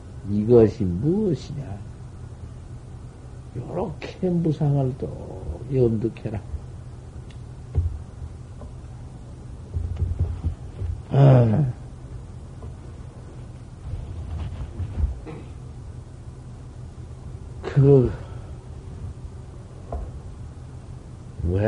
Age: 50-69